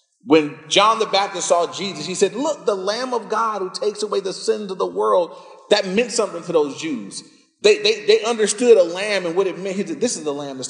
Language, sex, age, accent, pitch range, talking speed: English, male, 30-49, American, 140-210 Hz, 245 wpm